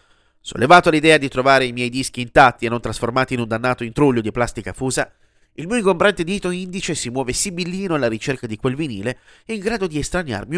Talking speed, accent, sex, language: 205 wpm, native, male, Italian